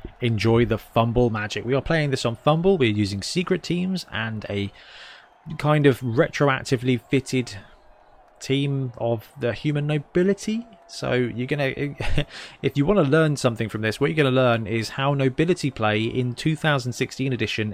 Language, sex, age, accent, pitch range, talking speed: English, male, 20-39, British, 115-150 Hz, 160 wpm